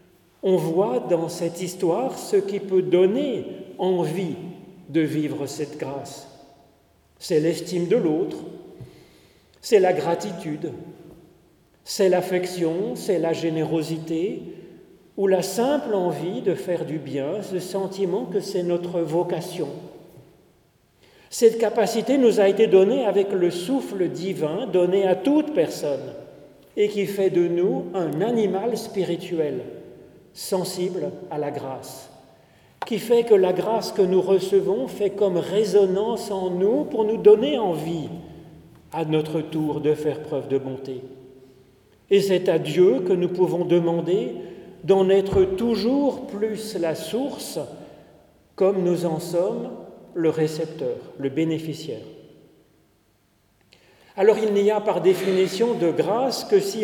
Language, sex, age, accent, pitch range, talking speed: French, male, 40-59, French, 160-195 Hz, 130 wpm